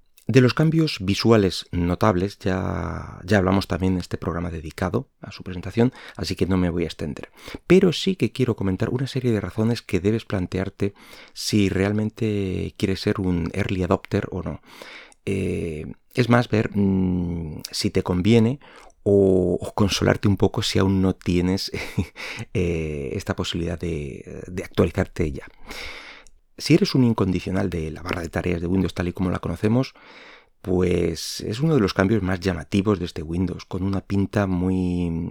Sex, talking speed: male, 170 wpm